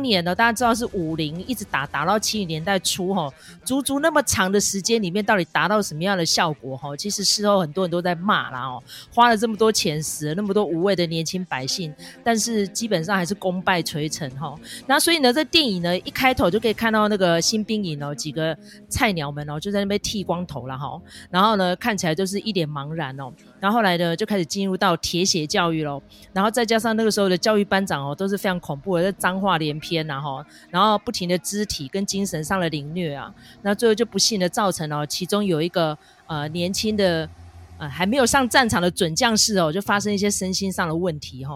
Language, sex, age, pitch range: Chinese, female, 30-49, 165-220 Hz